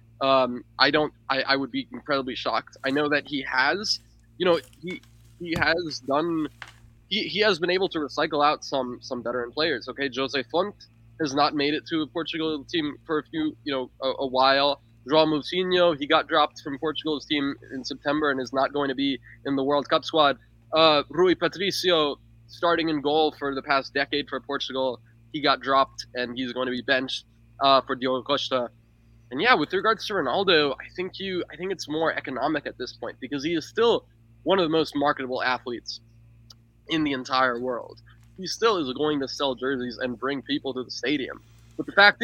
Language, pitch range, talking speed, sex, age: English, 125-160 Hz, 205 wpm, male, 20-39